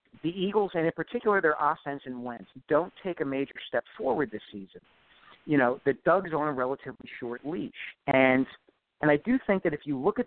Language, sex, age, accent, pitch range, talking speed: English, male, 50-69, American, 130-160 Hz, 210 wpm